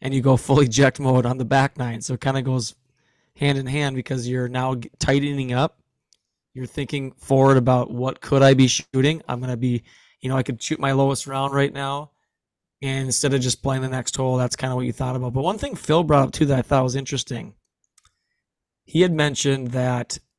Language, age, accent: English, 20-39, American